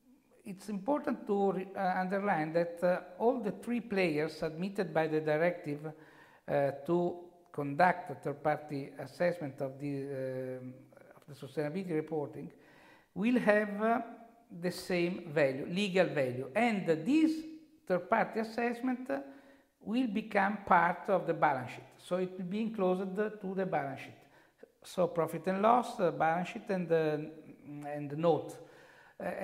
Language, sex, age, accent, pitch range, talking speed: English, male, 60-79, Italian, 155-205 Hz, 145 wpm